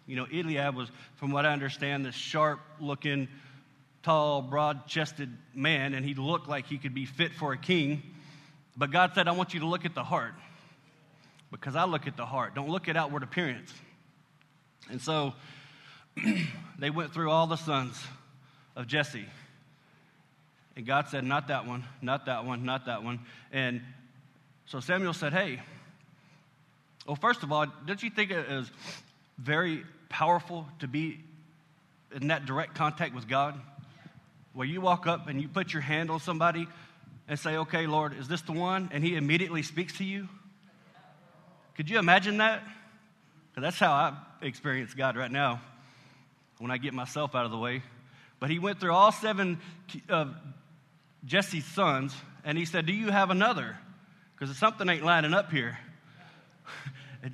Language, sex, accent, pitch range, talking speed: English, male, American, 140-170 Hz, 165 wpm